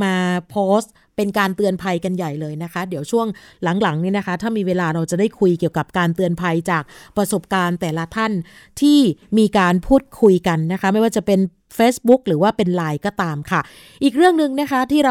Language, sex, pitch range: Thai, female, 185-230 Hz